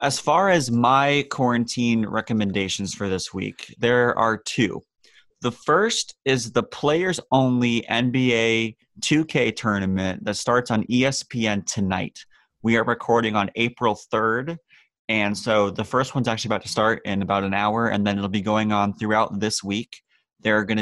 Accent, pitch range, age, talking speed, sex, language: American, 100-120 Hz, 20-39, 160 wpm, male, English